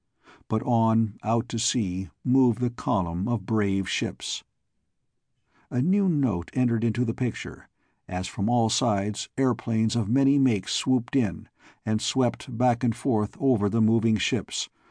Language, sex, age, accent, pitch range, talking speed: English, male, 60-79, American, 110-130 Hz, 150 wpm